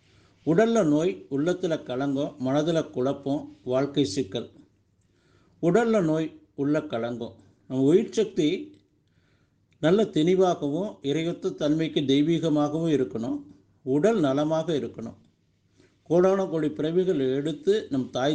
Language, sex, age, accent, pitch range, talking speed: Tamil, male, 50-69, native, 120-160 Hz, 100 wpm